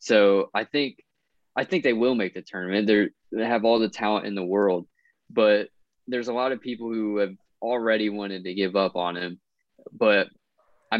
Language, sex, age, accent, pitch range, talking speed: English, male, 20-39, American, 95-115 Hz, 195 wpm